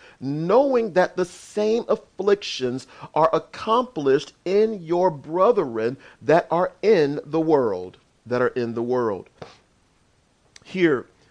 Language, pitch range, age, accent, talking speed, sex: English, 150-200 Hz, 40-59, American, 110 wpm, male